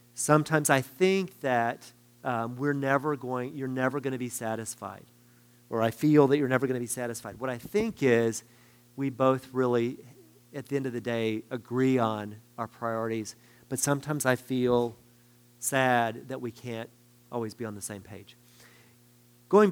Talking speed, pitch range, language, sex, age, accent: 170 wpm, 120-160 Hz, English, male, 40-59, American